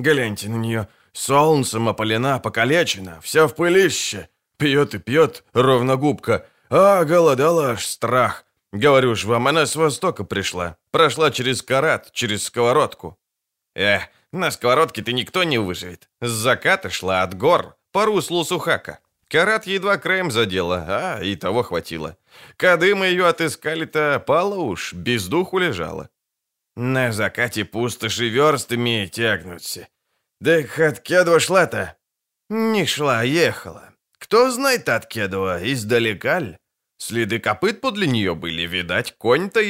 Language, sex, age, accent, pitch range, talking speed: Ukrainian, male, 20-39, native, 110-165 Hz, 125 wpm